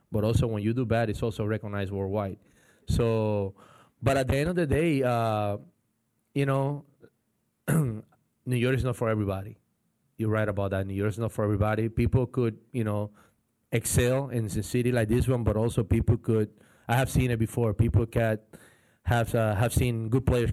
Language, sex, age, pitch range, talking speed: English, male, 20-39, 110-120 Hz, 190 wpm